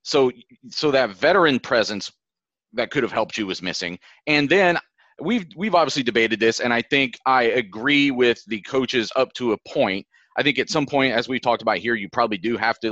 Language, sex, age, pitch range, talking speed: English, male, 30-49, 115-145 Hz, 215 wpm